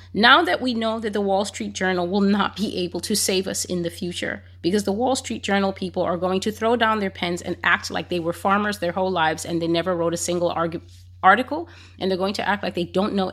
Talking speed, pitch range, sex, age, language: 255 wpm, 155-205 Hz, female, 30-49, English